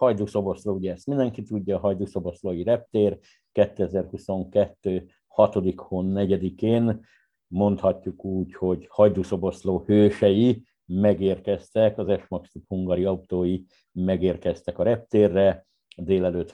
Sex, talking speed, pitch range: male, 95 wpm, 90-105 Hz